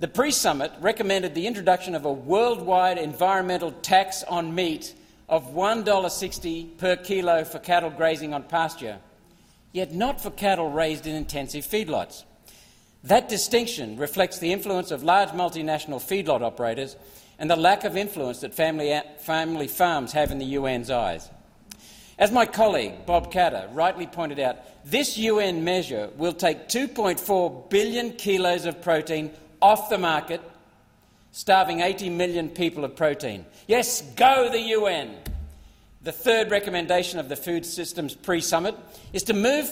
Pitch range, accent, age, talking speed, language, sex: 160-205 Hz, Australian, 50-69, 145 wpm, English, male